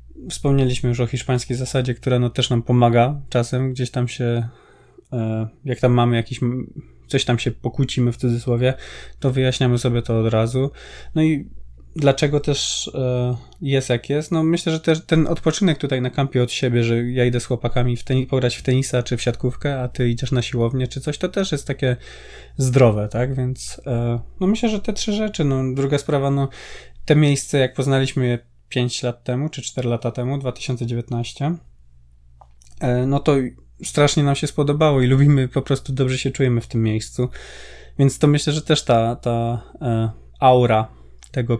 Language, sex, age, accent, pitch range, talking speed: Polish, male, 20-39, native, 120-135 Hz, 180 wpm